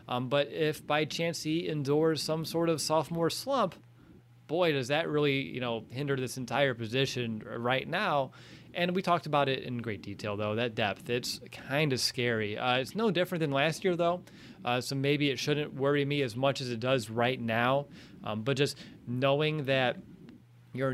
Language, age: English, 30-49